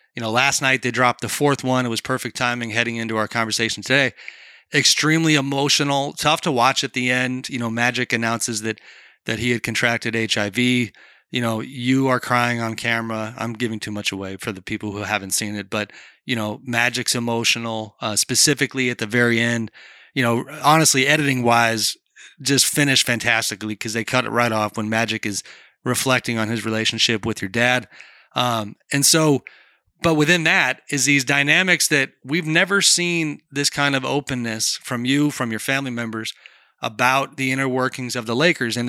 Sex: male